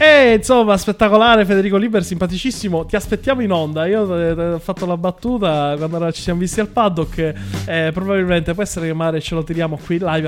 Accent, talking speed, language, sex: native, 185 wpm, Italian, male